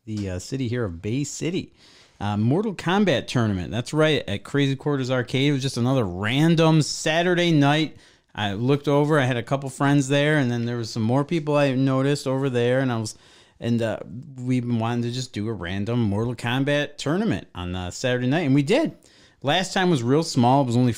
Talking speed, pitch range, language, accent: 210 wpm, 115-145 Hz, English, American